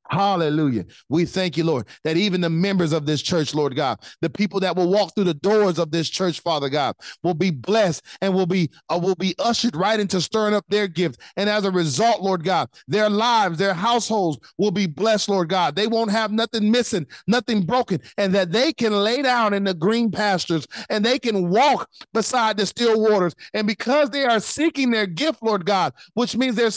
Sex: male